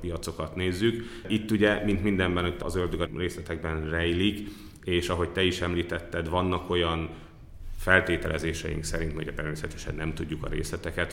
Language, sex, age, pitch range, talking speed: Hungarian, male, 30-49, 80-90 Hz, 145 wpm